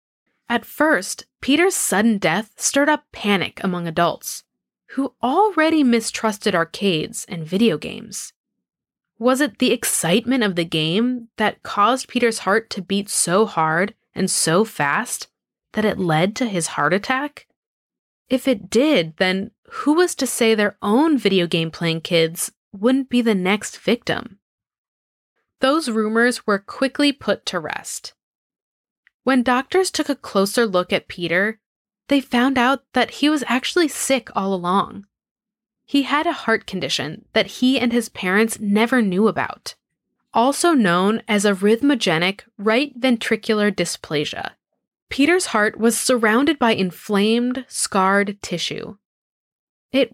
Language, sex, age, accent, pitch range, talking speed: English, female, 20-39, American, 190-255 Hz, 135 wpm